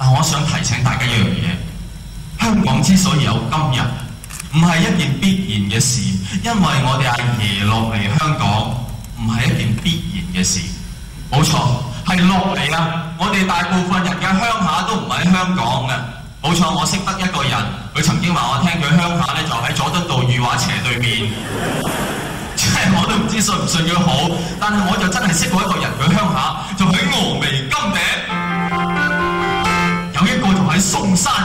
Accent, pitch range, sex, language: native, 125-185 Hz, male, Chinese